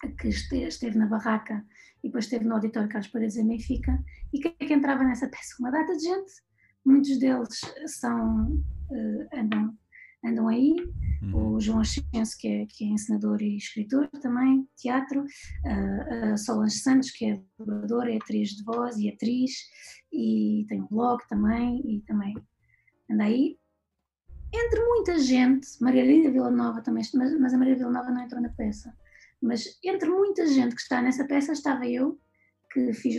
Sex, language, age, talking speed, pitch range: female, Portuguese, 20-39, 165 wpm, 220-270 Hz